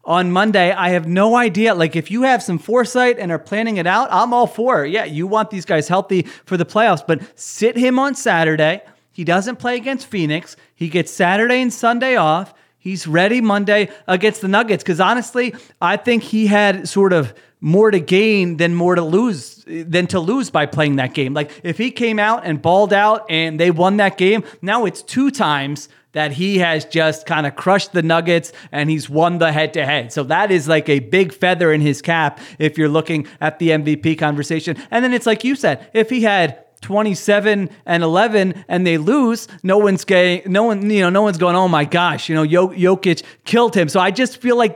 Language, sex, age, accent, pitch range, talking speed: English, male, 30-49, American, 165-215 Hz, 215 wpm